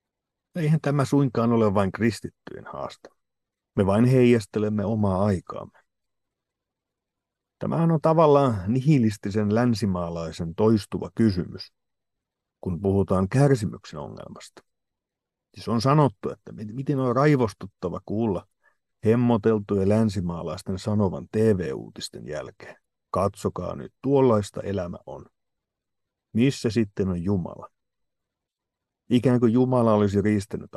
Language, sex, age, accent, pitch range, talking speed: Finnish, male, 50-69, native, 95-120 Hz, 100 wpm